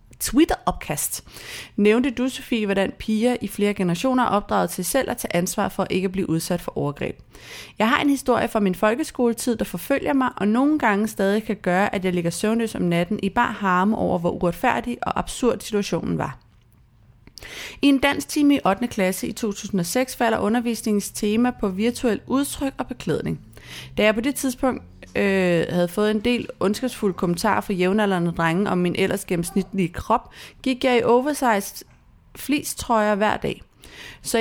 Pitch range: 185-235 Hz